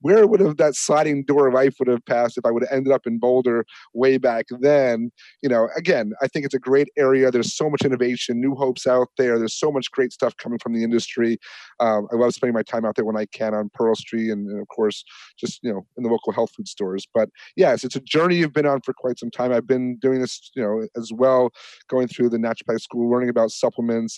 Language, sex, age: English, male, 30-49